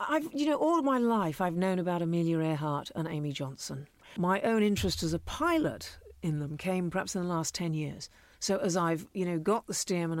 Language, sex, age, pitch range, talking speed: English, female, 50-69, 160-195 Hz, 225 wpm